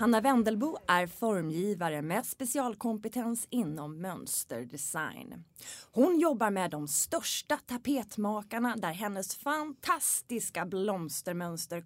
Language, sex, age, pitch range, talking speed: Swedish, female, 20-39, 170-245 Hz, 90 wpm